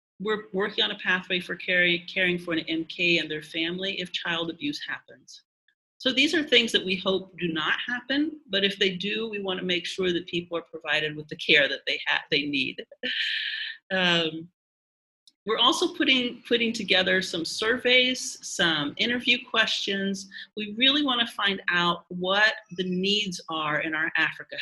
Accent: American